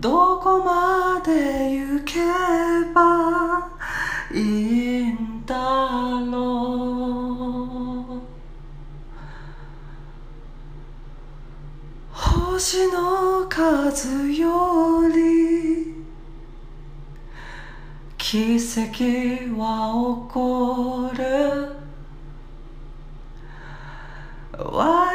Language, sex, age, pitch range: Japanese, female, 40-59, 205-275 Hz